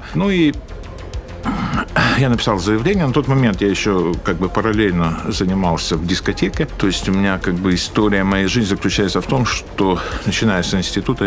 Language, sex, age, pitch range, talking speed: Ukrainian, male, 50-69, 85-110 Hz, 170 wpm